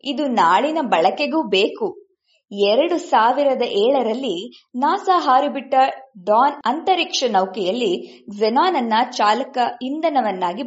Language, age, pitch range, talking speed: English, 20-39, 225-340 Hz, 120 wpm